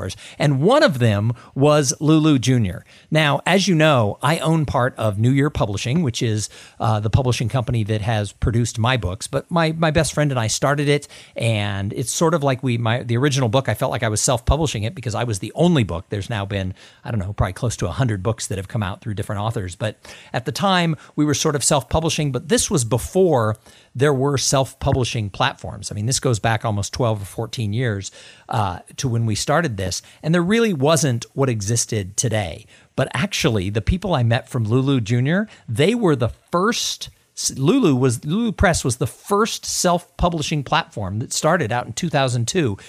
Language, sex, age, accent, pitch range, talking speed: English, male, 50-69, American, 115-155 Hz, 205 wpm